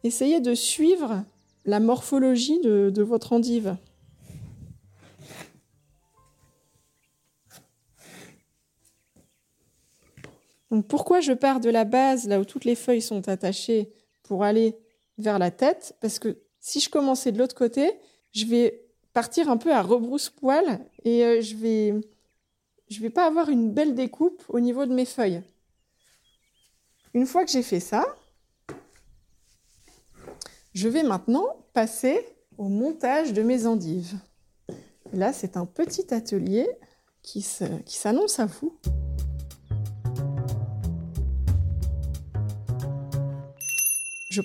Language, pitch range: French, 200-270 Hz